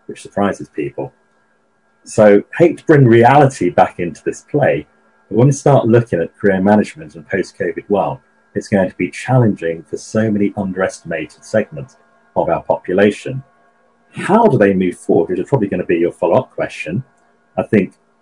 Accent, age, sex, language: British, 40-59, male, English